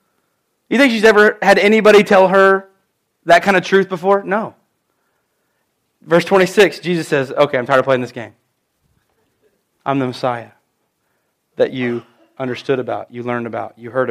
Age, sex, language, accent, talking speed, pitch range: 30-49, male, English, American, 155 wpm, 140-215 Hz